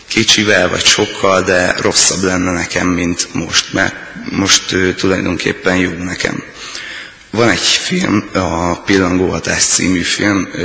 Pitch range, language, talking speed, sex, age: 90-95 Hz, Hungarian, 120 wpm, male, 30-49